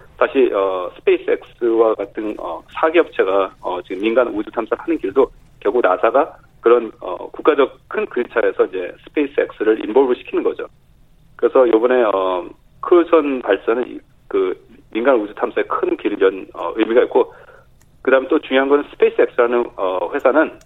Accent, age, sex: native, 30-49, male